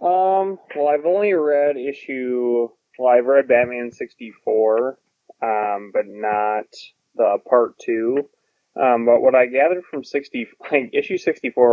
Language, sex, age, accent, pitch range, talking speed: English, male, 20-39, American, 110-150 Hz, 140 wpm